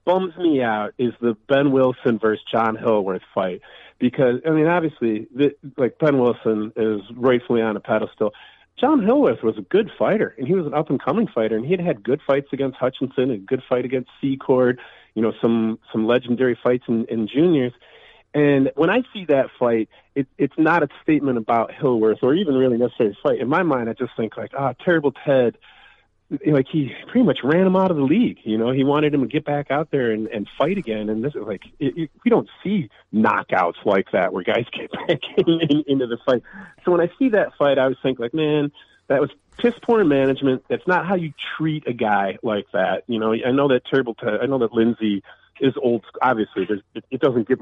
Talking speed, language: 210 wpm, English